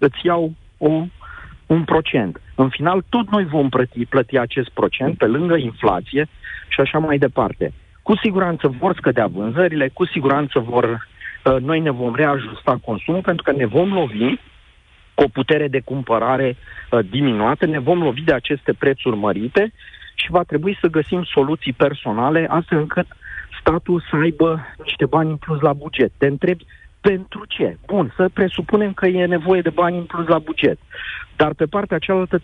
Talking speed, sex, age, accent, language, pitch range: 165 wpm, male, 40-59, native, Romanian, 130-175 Hz